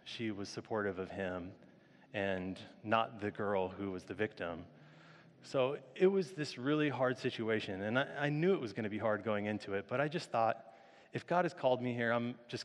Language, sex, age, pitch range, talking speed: English, male, 30-49, 100-125 Hz, 215 wpm